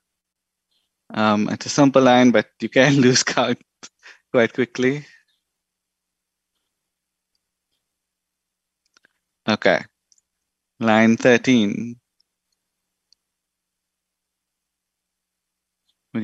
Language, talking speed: English, 60 wpm